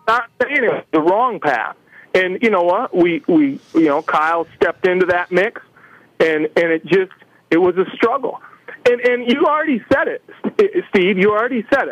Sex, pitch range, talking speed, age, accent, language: male, 170-235 Hz, 180 wpm, 40-59, American, English